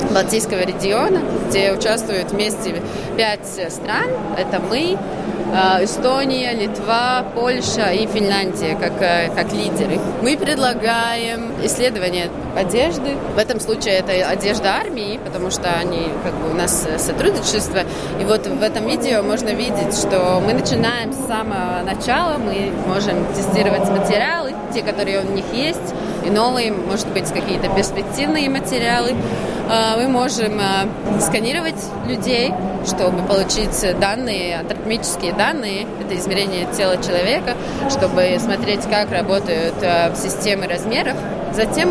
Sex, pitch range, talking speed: female, 190-220 Hz, 115 wpm